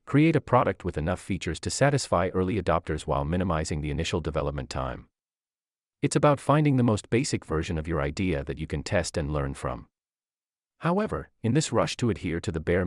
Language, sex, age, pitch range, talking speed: English, male, 40-59, 80-130 Hz, 195 wpm